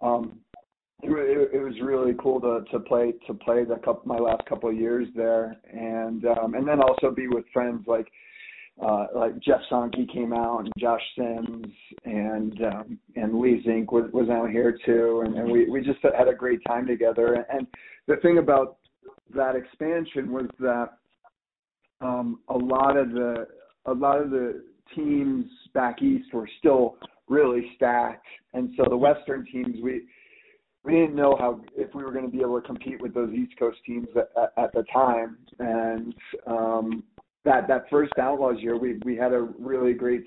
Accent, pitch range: American, 115-130 Hz